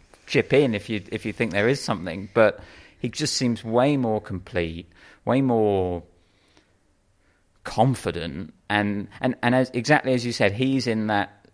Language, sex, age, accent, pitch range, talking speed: English, male, 30-49, British, 90-110 Hz, 160 wpm